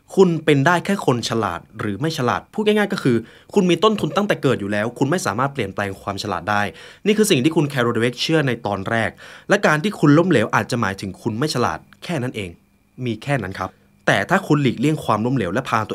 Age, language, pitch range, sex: 20-39, Thai, 105-155 Hz, male